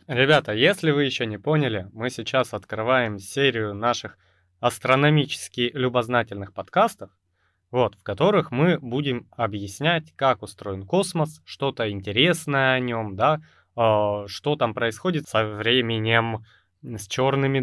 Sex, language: male, Russian